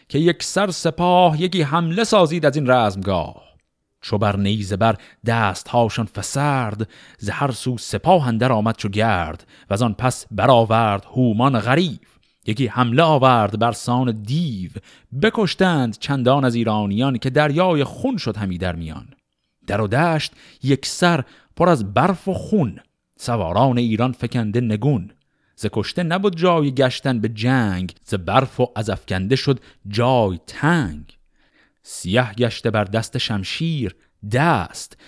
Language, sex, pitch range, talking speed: Persian, male, 105-140 Hz, 140 wpm